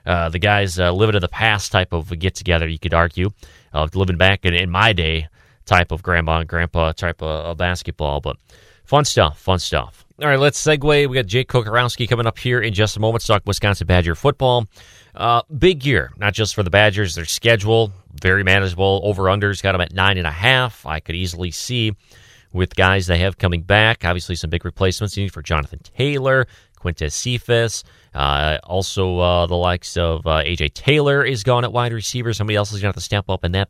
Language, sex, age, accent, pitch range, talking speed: English, male, 30-49, American, 85-110 Hz, 210 wpm